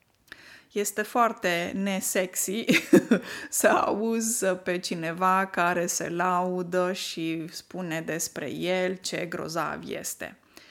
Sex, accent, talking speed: female, native, 95 wpm